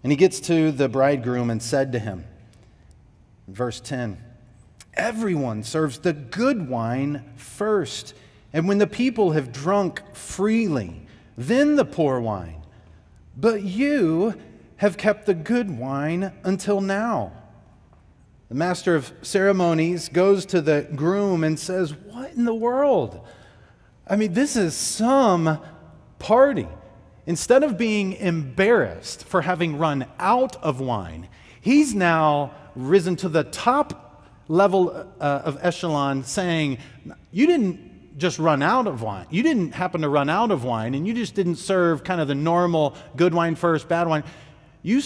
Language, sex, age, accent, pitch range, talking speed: English, male, 40-59, American, 125-190 Hz, 145 wpm